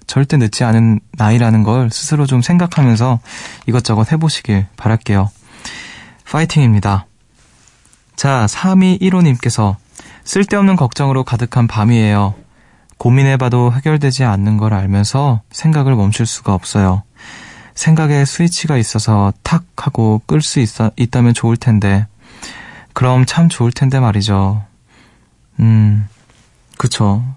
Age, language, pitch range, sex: 20-39, Korean, 110-135 Hz, male